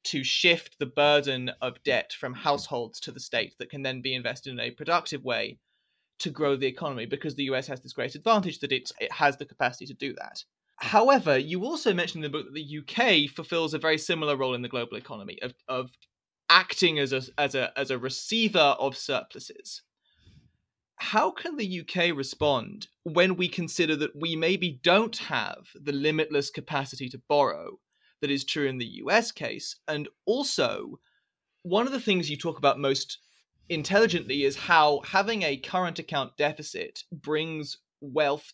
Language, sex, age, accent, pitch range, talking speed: English, male, 20-39, British, 135-175 Hz, 180 wpm